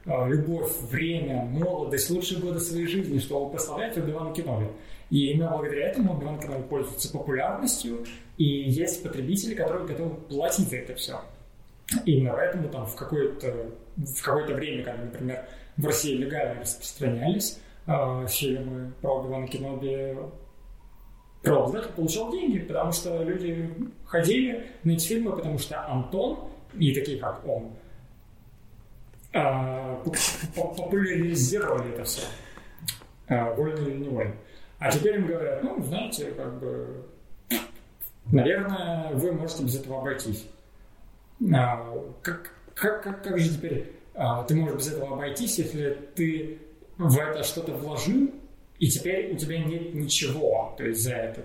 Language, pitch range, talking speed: Russian, 130-170 Hz, 135 wpm